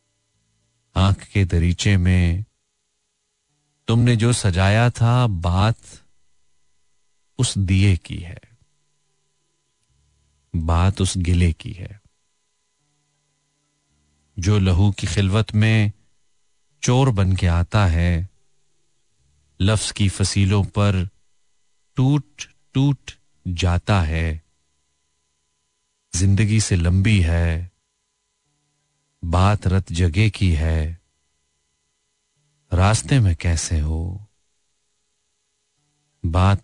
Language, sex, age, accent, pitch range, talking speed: Hindi, male, 40-59, native, 85-110 Hz, 80 wpm